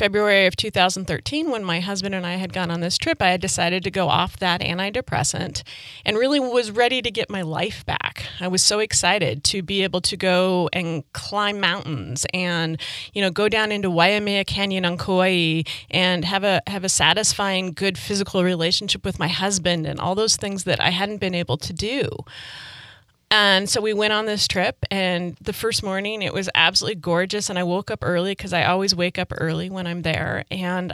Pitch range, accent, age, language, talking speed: 175-200 Hz, American, 30-49, English, 205 wpm